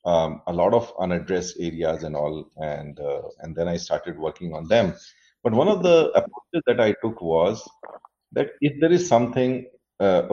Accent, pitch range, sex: Indian, 95-135 Hz, male